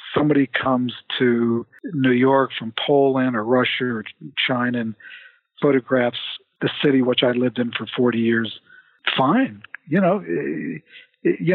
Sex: male